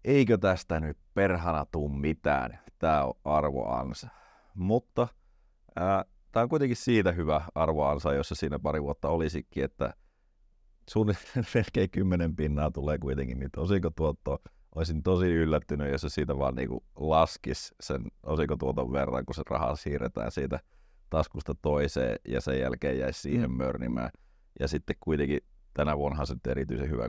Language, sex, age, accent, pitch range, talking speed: Finnish, male, 30-49, native, 70-90 Hz, 140 wpm